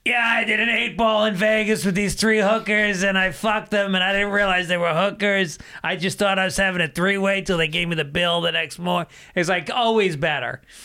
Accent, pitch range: American, 145-190 Hz